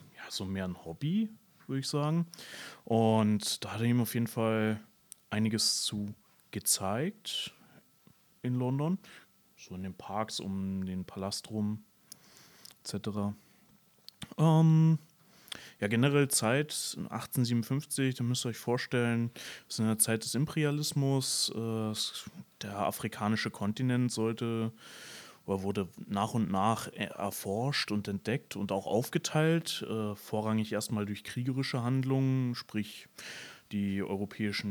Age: 30-49